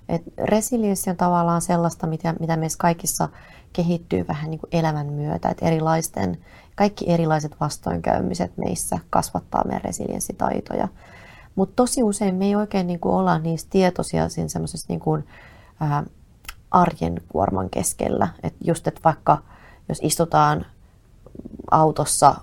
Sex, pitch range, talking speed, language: female, 140-180 Hz, 110 wpm, Finnish